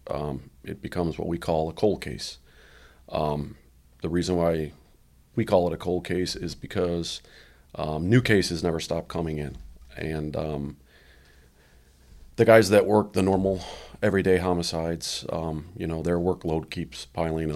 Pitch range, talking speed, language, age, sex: 70-85 Hz, 155 wpm, English, 40-59, male